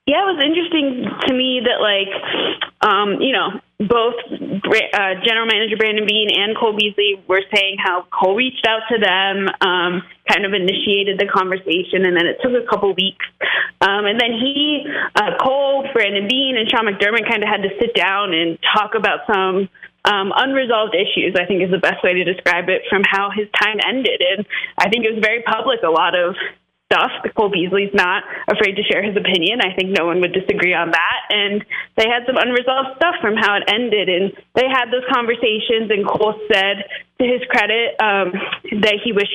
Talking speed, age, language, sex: 200 wpm, 20-39, English, female